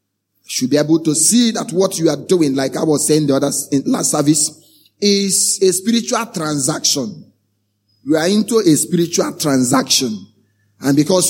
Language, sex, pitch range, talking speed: English, male, 150-205 Hz, 165 wpm